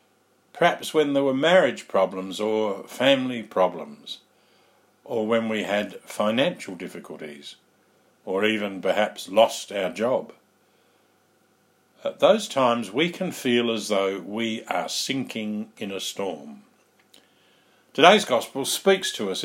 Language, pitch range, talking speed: English, 100-130 Hz, 125 wpm